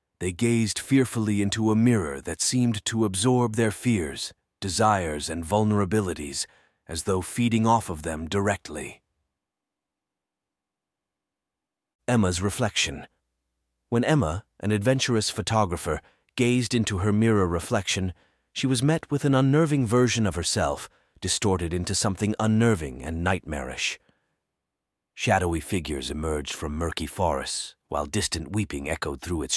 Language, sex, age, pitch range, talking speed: English, male, 40-59, 85-110 Hz, 125 wpm